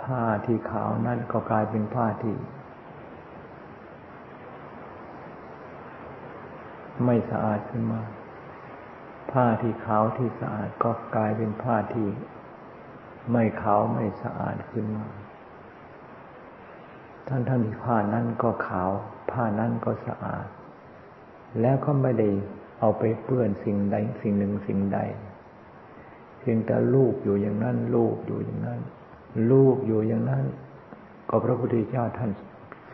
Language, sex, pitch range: Thai, male, 105-120 Hz